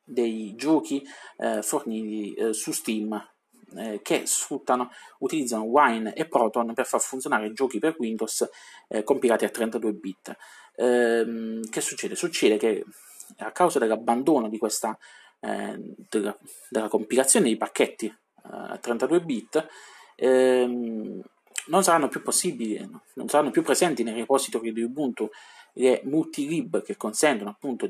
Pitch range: 115-145 Hz